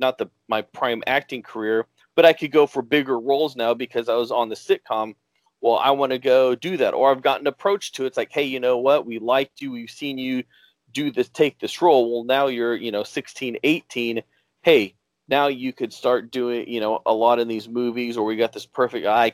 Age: 30-49